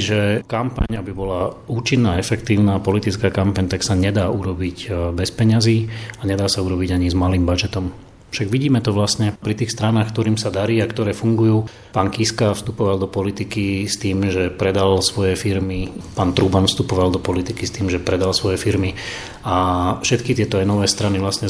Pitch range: 95-110 Hz